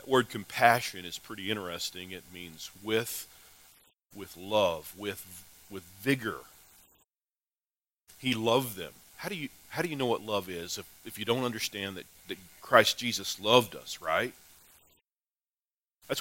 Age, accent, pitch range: 40-59, American, 85-145 Hz